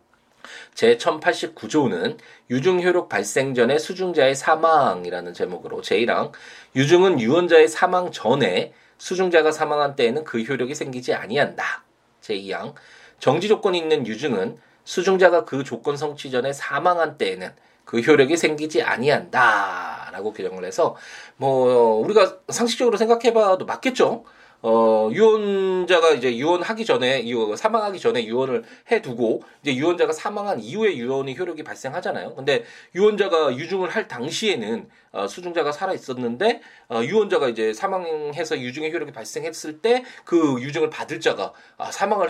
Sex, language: male, Korean